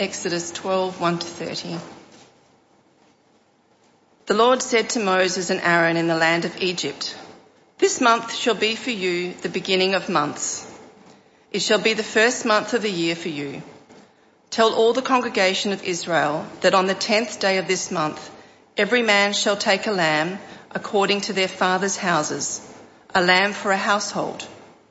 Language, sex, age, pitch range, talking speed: English, female, 40-59, 170-215 Hz, 160 wpm